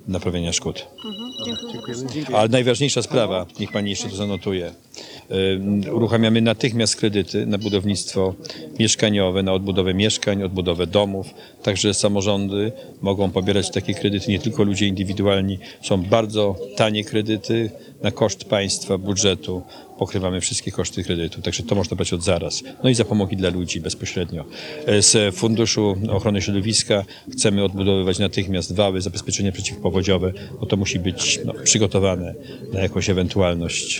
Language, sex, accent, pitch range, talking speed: Polish, male, native, 95-110 Hz, 135 wpm